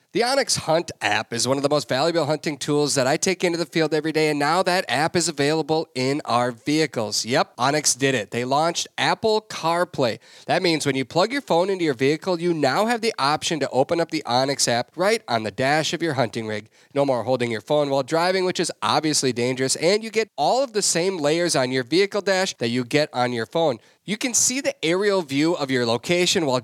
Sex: male